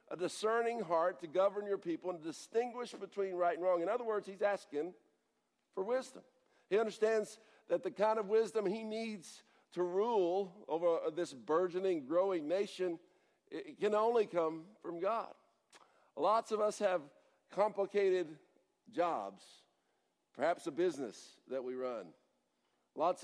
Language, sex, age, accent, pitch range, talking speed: English, male, 60-79, American, 180-220 Hz, 140 wpm